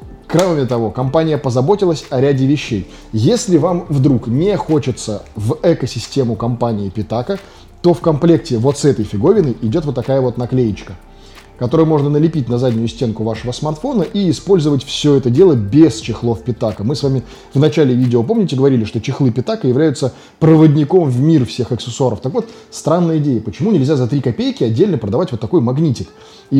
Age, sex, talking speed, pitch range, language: 20-39, male, 170 wpm, 115-150 Hz, Russian